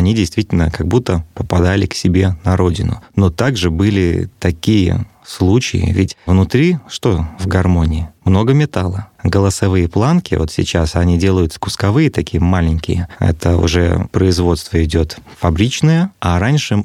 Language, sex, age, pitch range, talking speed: Russian, male, 30-49, 85-110 Hz, 130 wpm